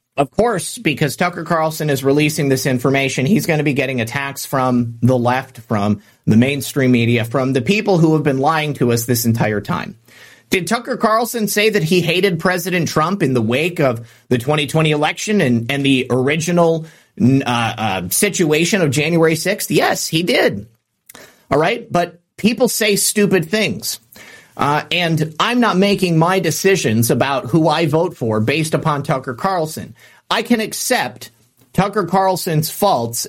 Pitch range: 130-180 Hz